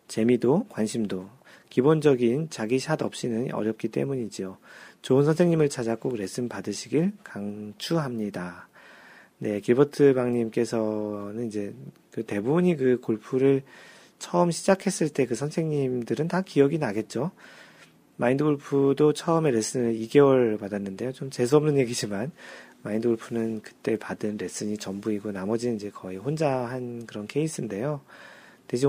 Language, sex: Korean, male